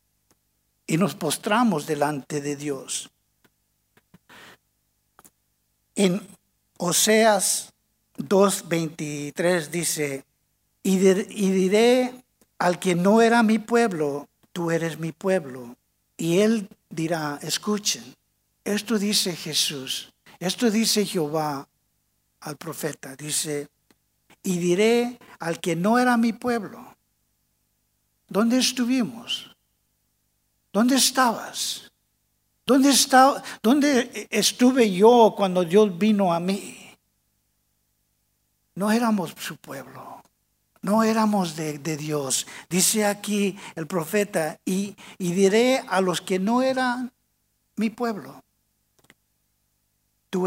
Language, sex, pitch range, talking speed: English, male, 150-220 Hz, 95 wpm